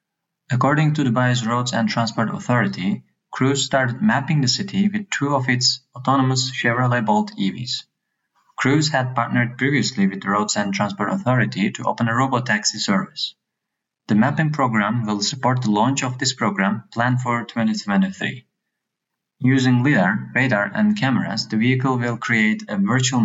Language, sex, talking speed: English, male, 155 wpm